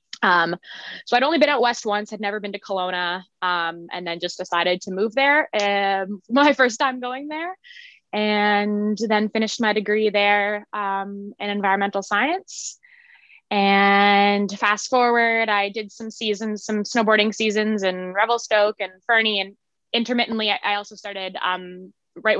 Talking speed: 160 wpm